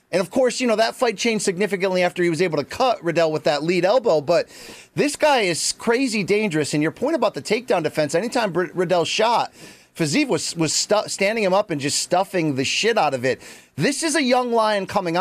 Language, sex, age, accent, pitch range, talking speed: English, male, 30-49, American, 165-225 Hz, 225 wpm